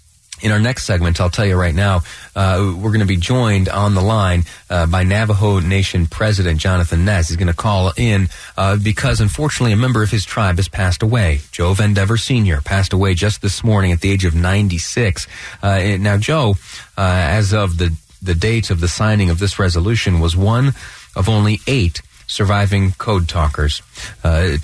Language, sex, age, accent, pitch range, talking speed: English, male, 30-49, American, 85-110 Hz, 190 wpm